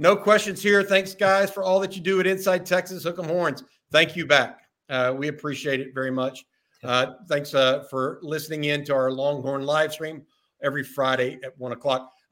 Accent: American